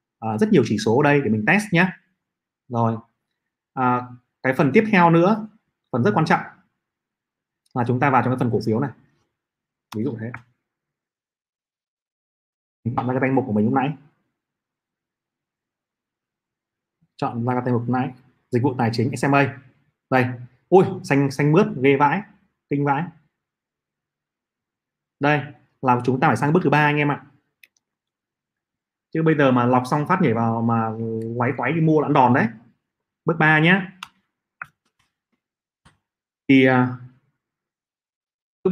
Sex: male